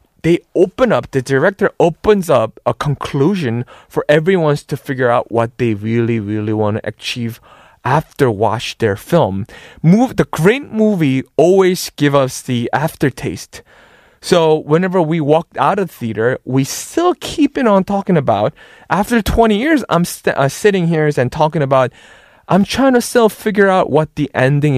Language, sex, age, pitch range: Korean, male, 20-39, 135-205 Hz